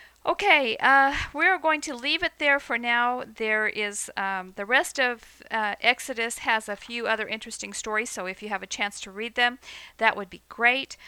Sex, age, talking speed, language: female, 50-69, 200 wpm, English